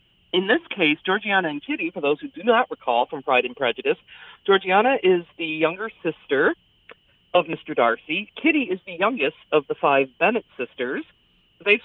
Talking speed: 170 wpm